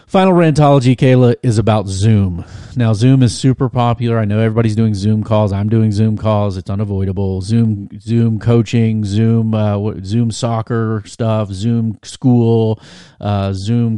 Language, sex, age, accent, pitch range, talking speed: English, male, 40-59, American, 100-115 Hz, 140 wpm